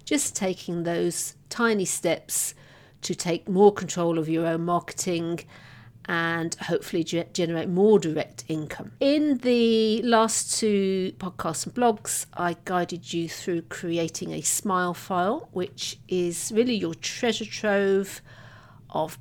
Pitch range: 165-200 Hz